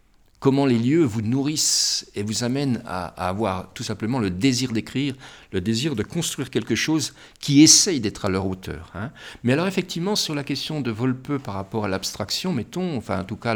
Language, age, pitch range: French, 50-69, 105-155 Hz